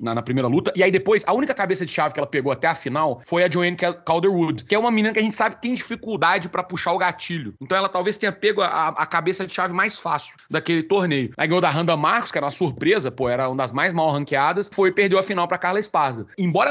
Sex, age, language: male, 30-49, Portuguese